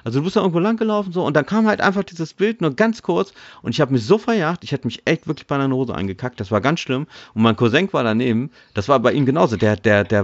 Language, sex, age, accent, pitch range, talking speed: German, male, 40-59, German, 95-140 Hz, 295 wpm